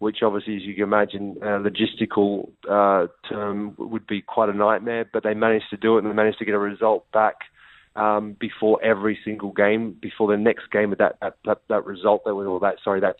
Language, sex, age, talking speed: English, male, 30-49, 225 wpm